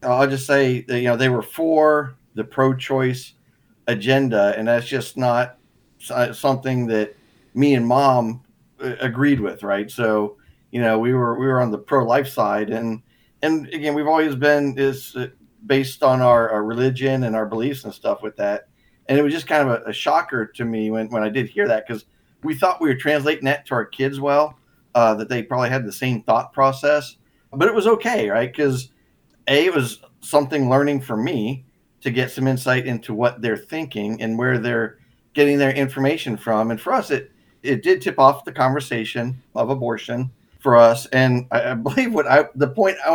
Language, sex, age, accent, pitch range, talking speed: English, male, 50-69, American, 115-140 Hz, 200 wpm